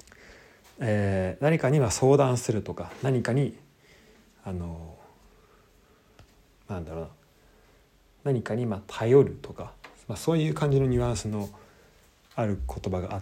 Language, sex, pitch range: Japanese, male, 90-130 Hz